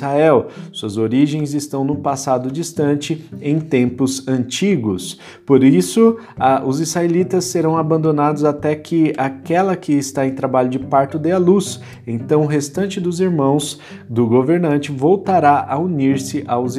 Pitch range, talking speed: 125-160 Hz, 135 wpm